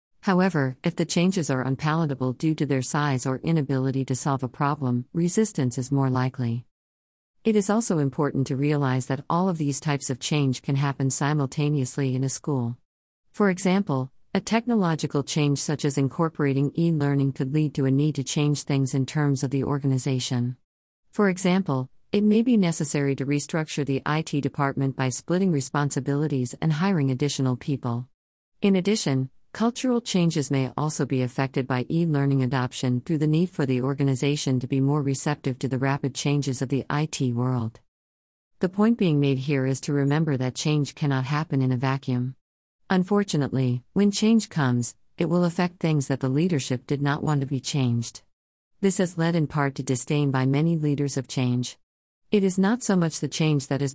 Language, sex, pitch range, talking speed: English, female, 130-155 Hz, 180 wpm